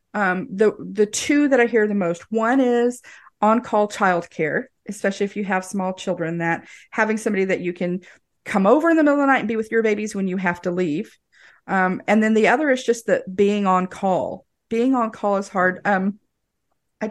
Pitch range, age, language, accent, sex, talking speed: 180-220 Hz, 40-59, English, American, female, 220 wpm